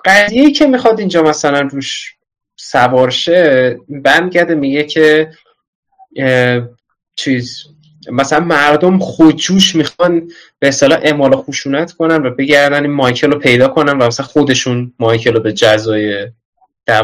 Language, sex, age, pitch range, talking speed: Persian, male, 20-39, 125-165 Hz, 120 wpm